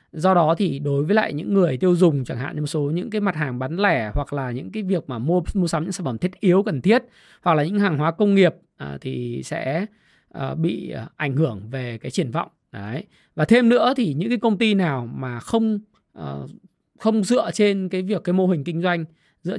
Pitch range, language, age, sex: 150-195 Hz, Vietnamese, 20-39, male